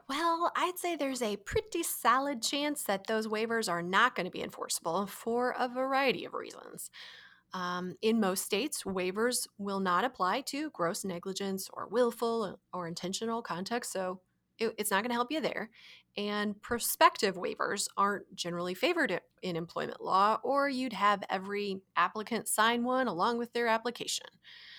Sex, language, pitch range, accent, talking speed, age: female, English, 195-260 Hz, American, 160 wpm, 30-49